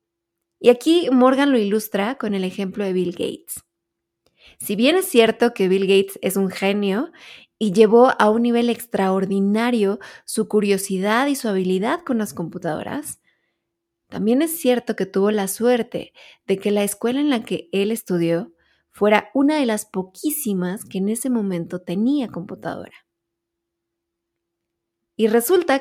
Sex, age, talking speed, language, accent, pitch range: female, 20-39, 150 wpm, Spanish, Mexican, 190-245 Hz